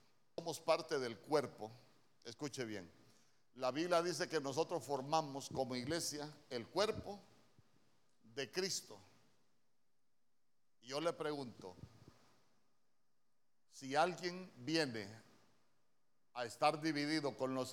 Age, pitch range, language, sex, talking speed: 50-69, 125-165 Hz, Spanish, male, 100 wpm